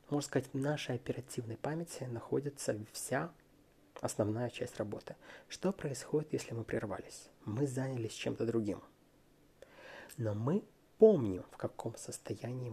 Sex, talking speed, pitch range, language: male, 125 wpm, 120-175 Hz, Russian